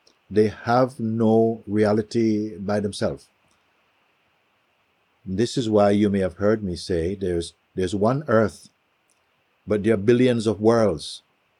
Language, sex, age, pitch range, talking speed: English, male, 50-69, 95-115 Hz, 130 wpm